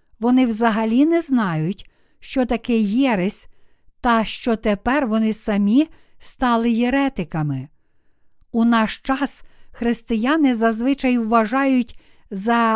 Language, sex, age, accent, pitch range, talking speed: Ukrainian, female, 60-79, native, 210-255 Hz, 100 wpm